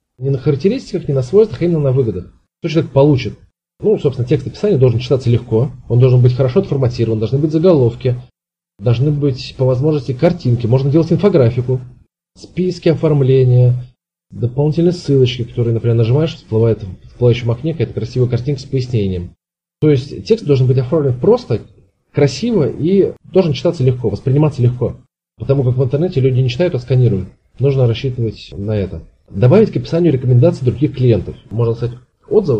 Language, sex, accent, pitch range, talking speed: Russian, male, native, 115-150 Hz, 160 wpm